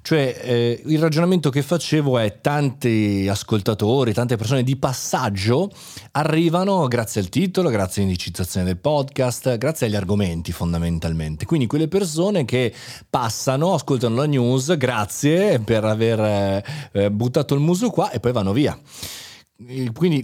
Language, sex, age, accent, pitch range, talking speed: Italian, male, 30-49, native, 110-155 Hz, 135 wpm